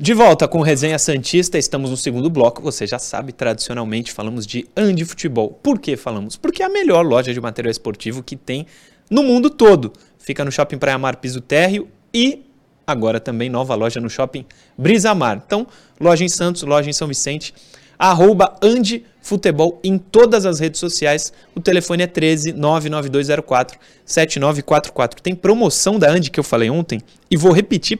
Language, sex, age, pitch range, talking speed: Portuguese, male, 20-39, 140-200 Hz, 165 wpm